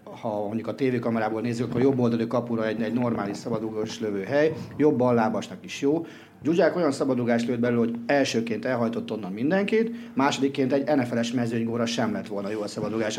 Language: Hungarian